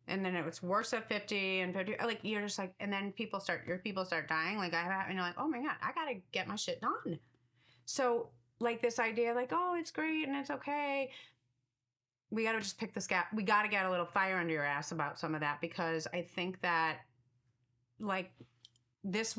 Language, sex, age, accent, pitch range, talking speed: English, female, 30-49, American, 160-210 Hz, 230 wpm